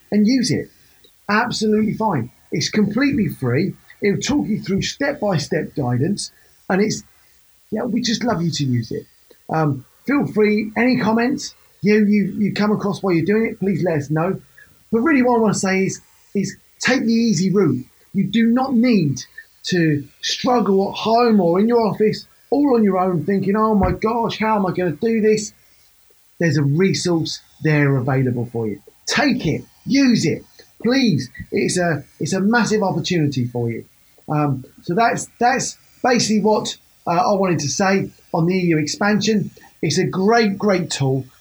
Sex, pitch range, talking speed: male, 160-220 Hz, 175 wpm